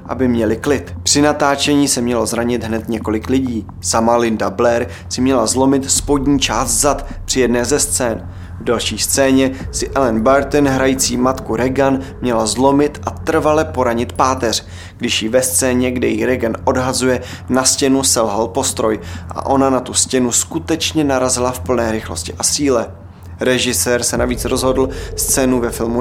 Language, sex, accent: Czech, male, native